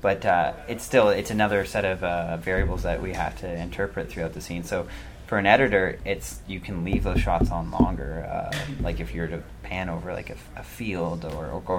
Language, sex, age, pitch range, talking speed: English, male, 30-49, 85-110 Hz, 230 wpm